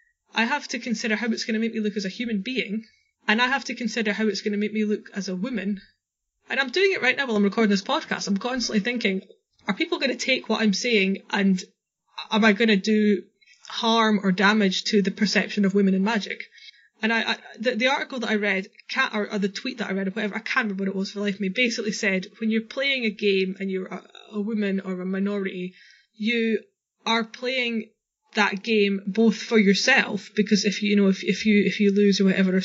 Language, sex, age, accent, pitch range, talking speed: English, female, 20-39, British, 200-230 Hz, 235 wpm